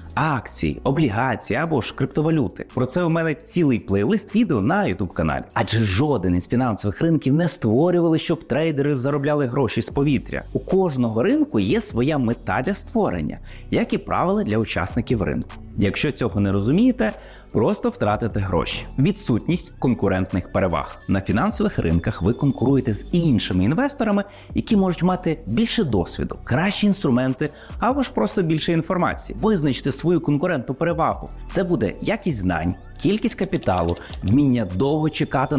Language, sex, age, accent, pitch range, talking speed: Ukrainian, male, 30-49, native, 100-170 Hz, 140 wpm